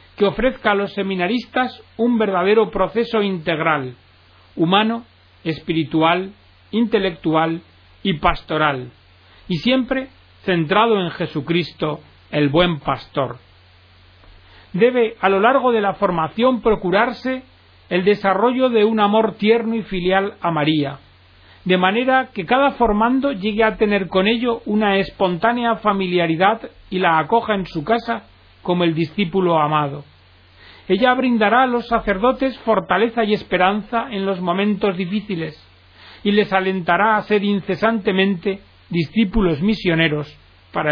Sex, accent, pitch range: male, Spanish, 165-225 Hz